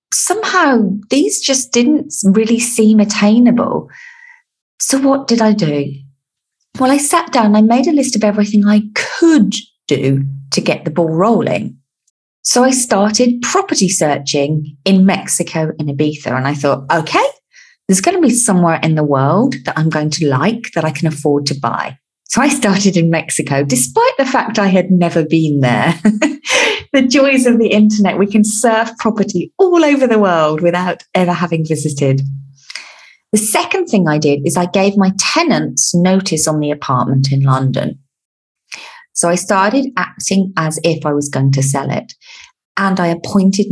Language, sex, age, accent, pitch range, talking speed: English, female, 40-59, British, 150-250 Hz, 170 wpm